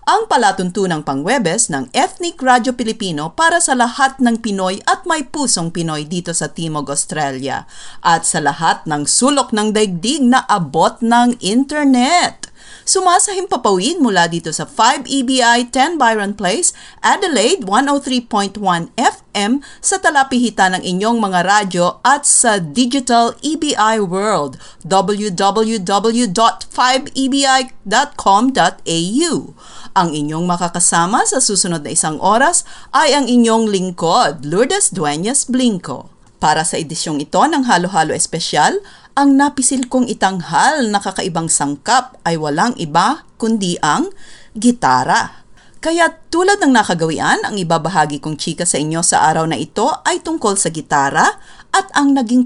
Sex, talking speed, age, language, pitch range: female, 130 wpm, 40-59, English, 175-265 Hz